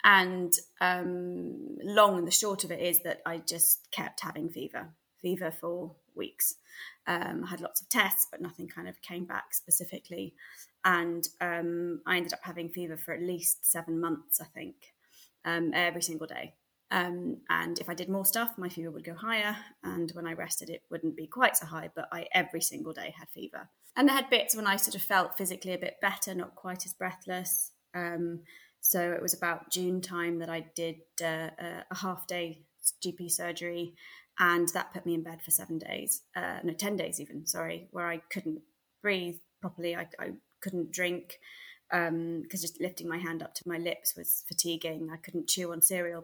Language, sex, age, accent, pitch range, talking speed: English, female, 20-39, British, 165-185 Hz, 195 wpm